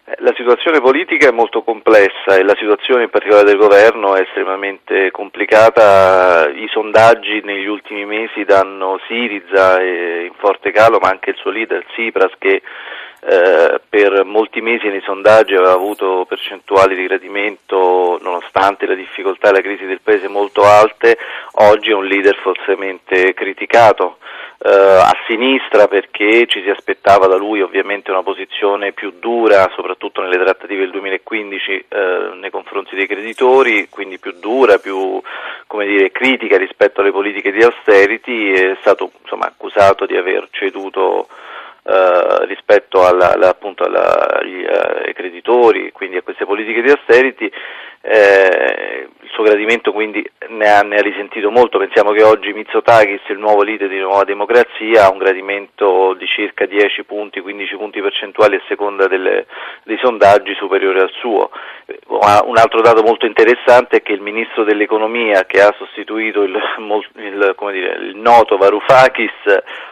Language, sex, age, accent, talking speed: Italian, male, 40-59, native, 140 wpm